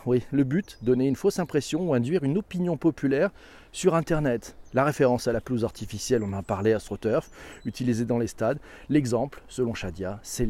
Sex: male